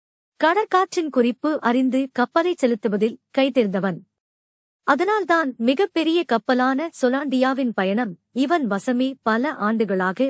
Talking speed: 85 wpm